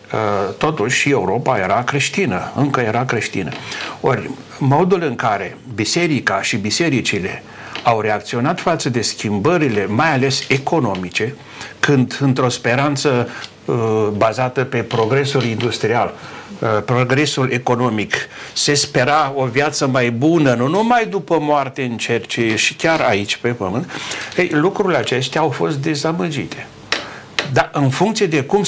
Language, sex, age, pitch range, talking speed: Romanian, male, 60-79, 115-145 Hz, 120 wpm